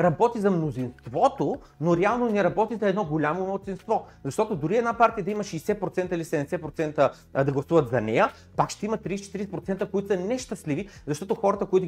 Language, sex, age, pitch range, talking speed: Bulgarian, male, 30-49, 150-200 Hz, 170 wpm